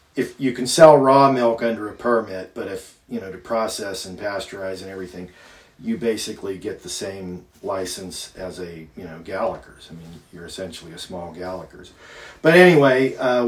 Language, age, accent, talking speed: English, 40-59, American, 180 wpm